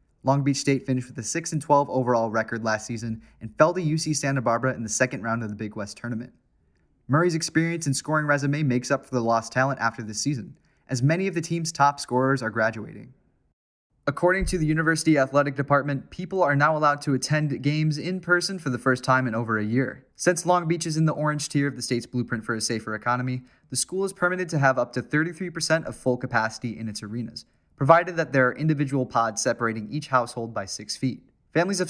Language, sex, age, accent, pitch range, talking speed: English, male, 20-39, American, 120-155 Hz, 220 wpm